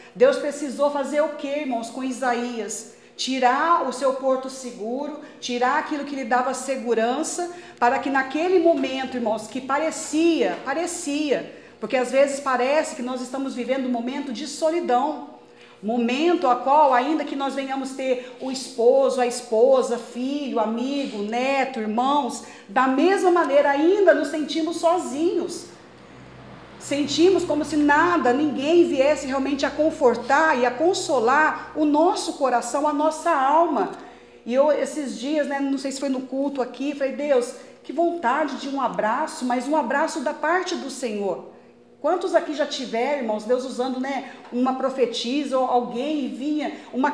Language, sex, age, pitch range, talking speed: Portuguese, female, 40-59, 250-300 Hz, 155 wpm